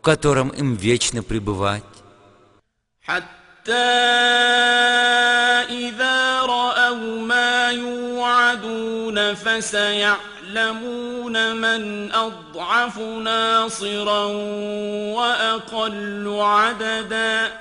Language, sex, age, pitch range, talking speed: English, male, 50-69, 205-240 Hz, 45 wpm